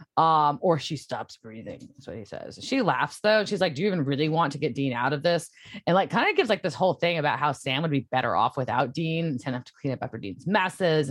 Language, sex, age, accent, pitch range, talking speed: English, female, 20-39, American, 135-200 Hz, 280 wpm